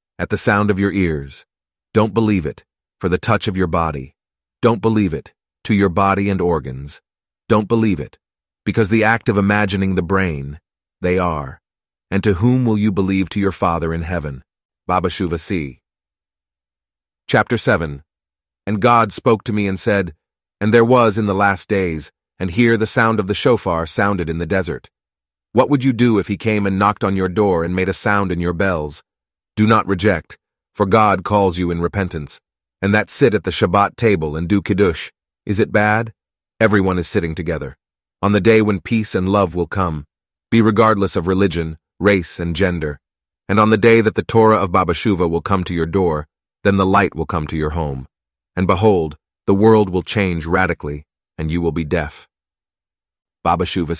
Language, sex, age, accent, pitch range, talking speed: English, male, 30-49, American, 80-105 Hz, 190 wpm